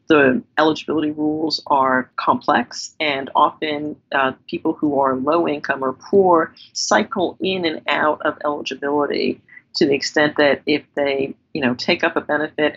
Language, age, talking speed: English, 40-59, 150 wpm